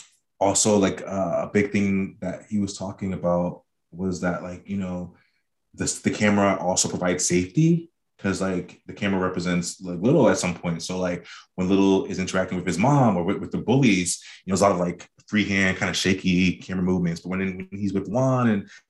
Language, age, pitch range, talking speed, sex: English, 20-39, 90-105 Hz, 215 wpm, male